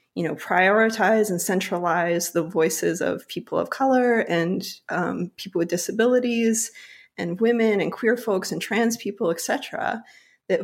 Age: 30-49